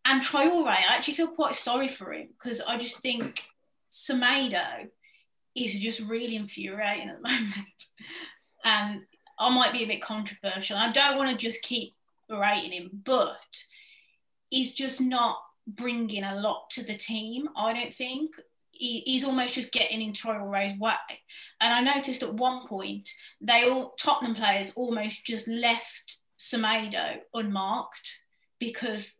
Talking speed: 155 wpm